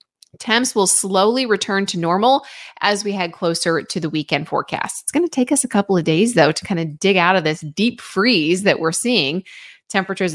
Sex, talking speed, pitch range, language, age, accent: female, 215 wpm, 160-210 Hz, English, 30-49, American